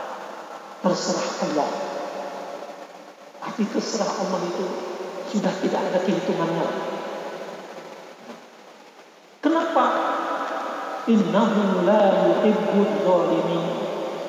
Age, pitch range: 50-69, 195-275 Hz